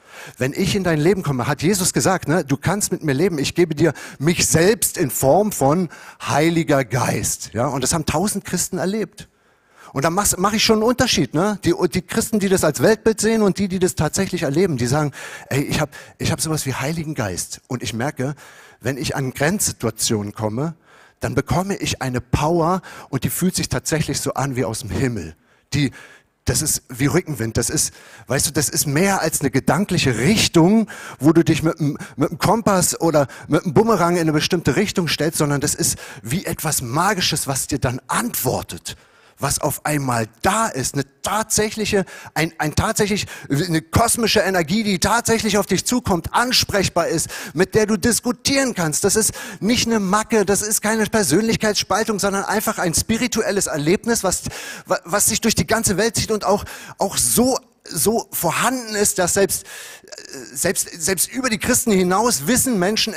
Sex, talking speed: male, 185 wpm